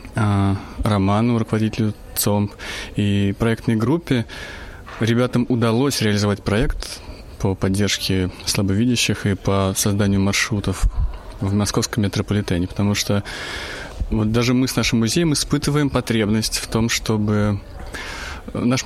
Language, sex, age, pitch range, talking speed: Russian, male, 20-39, 95-120 Hz, 105 wpm